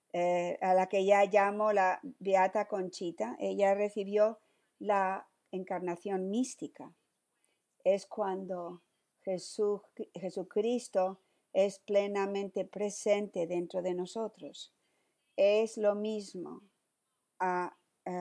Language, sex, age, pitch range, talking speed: Spanish, female, 50-69, 180-210 Hz, 90 wpm